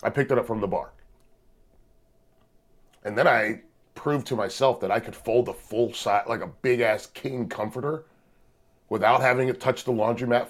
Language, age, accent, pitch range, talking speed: English, 30-49, American, 95-135 Hz, 185 wpm